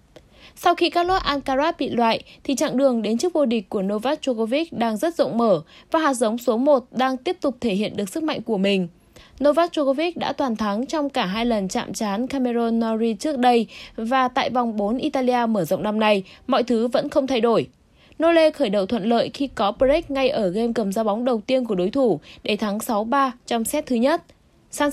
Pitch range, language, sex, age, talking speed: 220-285 Hz, Vietnamese, female, 20-39, 225 wpm